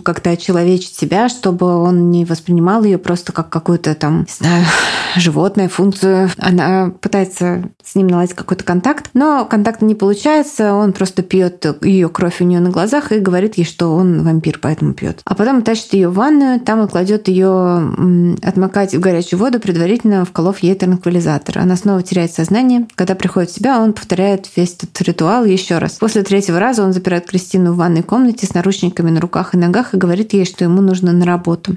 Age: 20-39